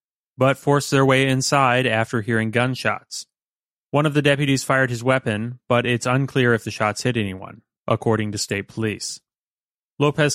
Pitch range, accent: 110-135 Hz, American